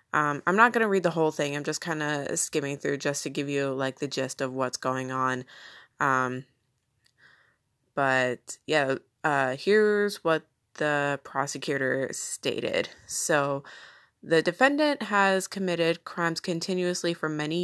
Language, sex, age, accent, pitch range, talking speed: English, female, 20-39, American, 145-175 Hz, 150 wpm